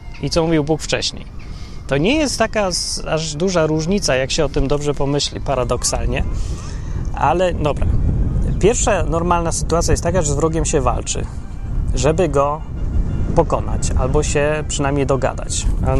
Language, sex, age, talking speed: Polish, male, 20-39, 145 wpm